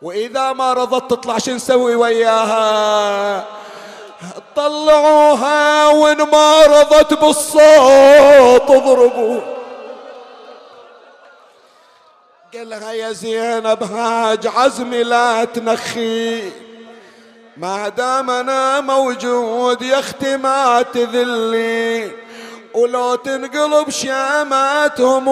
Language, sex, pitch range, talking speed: Arabic, male, 230-270 Hz, 75 wpm